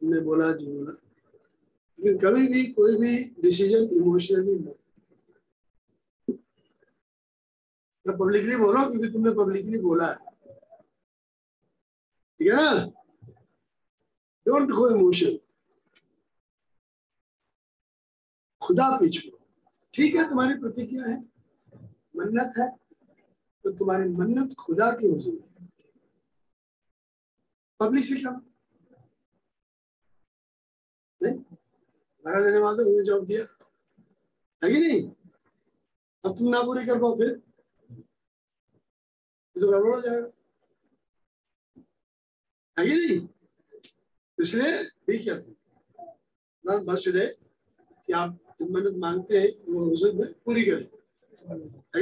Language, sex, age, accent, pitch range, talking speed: Hindi, male, 50-69, native, 200-330 Hz, 75 wpm